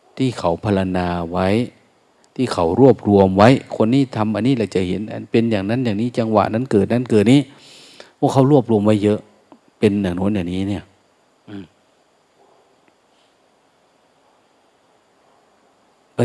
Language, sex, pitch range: Thai, male, 95-120 Hz